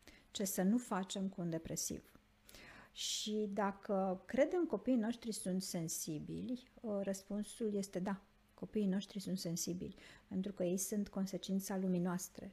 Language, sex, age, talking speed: Romanian, female, 50-69, 130 wpm